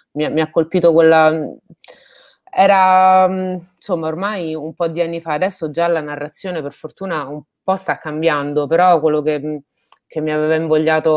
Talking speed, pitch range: 155 wpm, 150-165 Hz